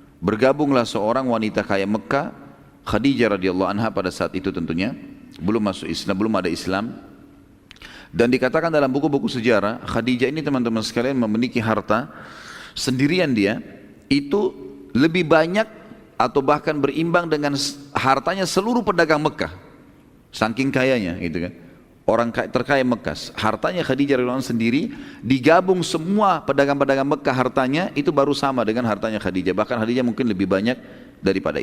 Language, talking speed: Indonesian, 135 wpm